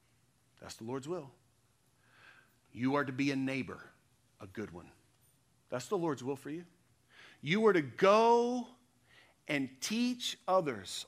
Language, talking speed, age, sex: English, 140 wpm, 40-59, male